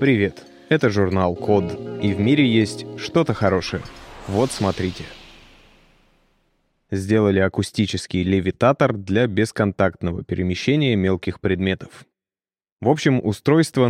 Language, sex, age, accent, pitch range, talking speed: Russian, male, 20-39, native, 95-115 Hz, 100 wpm